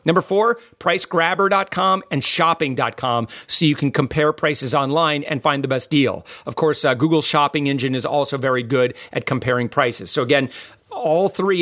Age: 40-59